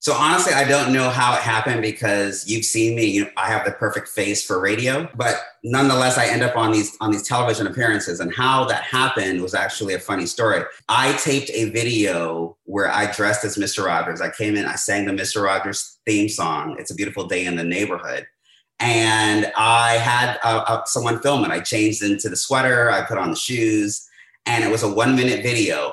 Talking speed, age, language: 215 wpm, 30-49, English